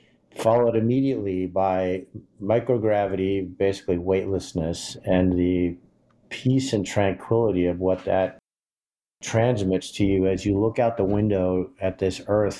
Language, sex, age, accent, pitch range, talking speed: English, male, 50-69, American, 95-110 Hz, 125 wpm